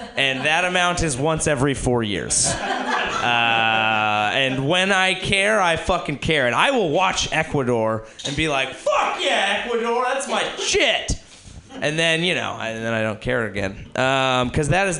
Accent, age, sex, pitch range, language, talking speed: American, 30-49, male, 120-175 Hz, English, 175 wpm